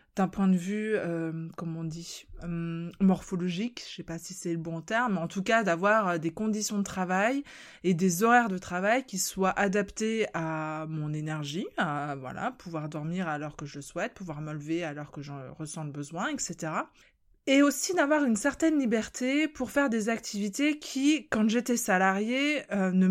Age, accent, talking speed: 20-39, French, 195 wpm